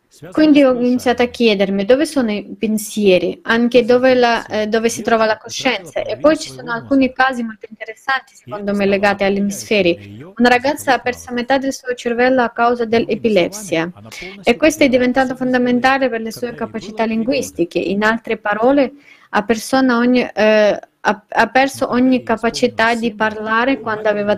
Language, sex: Italian, female